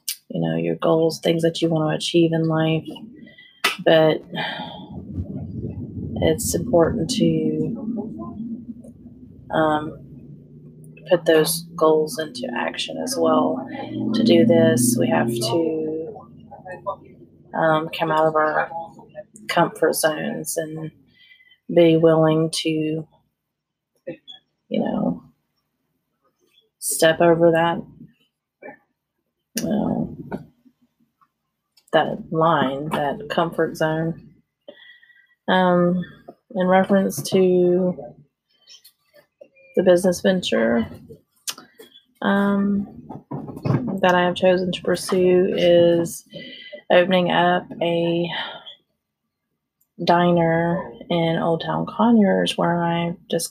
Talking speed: 85 wpm